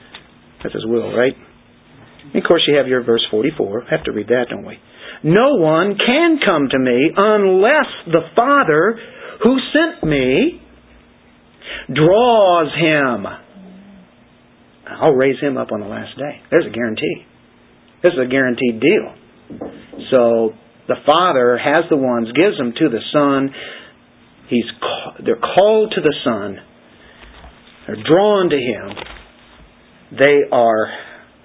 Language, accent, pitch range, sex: English, American, 120-185 Hz, male